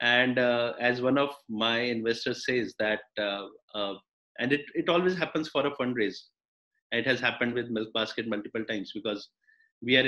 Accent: Indian